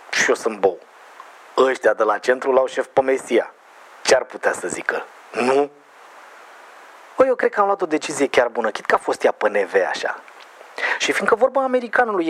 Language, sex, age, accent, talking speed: Romanian, male, 30-49, native, 195 wpm